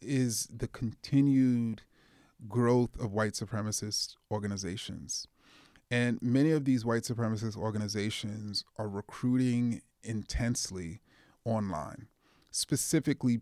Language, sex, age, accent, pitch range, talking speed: English, male, 30-49, American, 115-145 Hz, 90 wpm